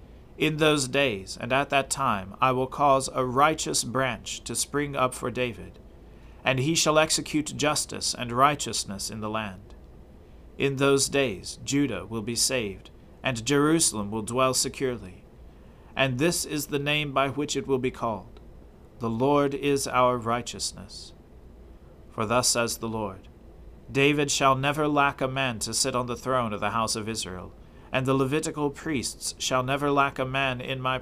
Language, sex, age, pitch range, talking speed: English, male, 40-59, 100-135 Hz, 170 wpm